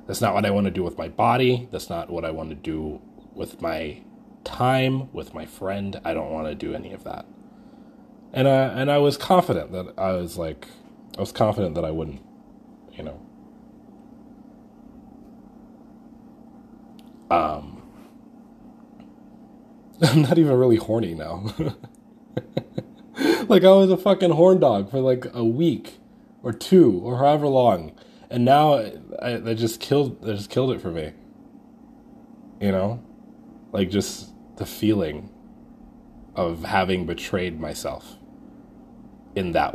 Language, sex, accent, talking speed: English, male, American, 145 wpm